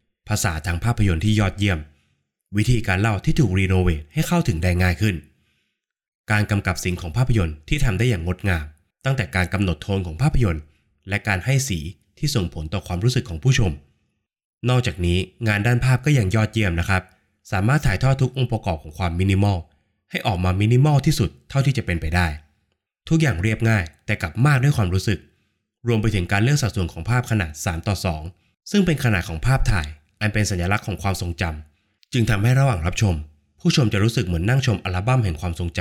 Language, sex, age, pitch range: Thai, male, 20-39, 90-120 Hz